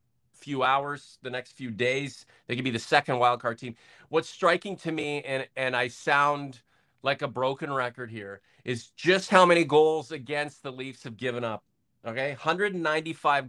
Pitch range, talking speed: 125-150 Hz, 175 wpm